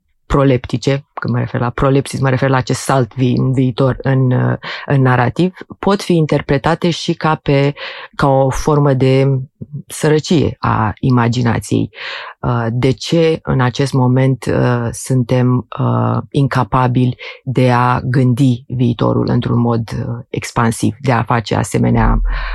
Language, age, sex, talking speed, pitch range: Romanian, 30-49, female, 120 wpm, 120-160 Hz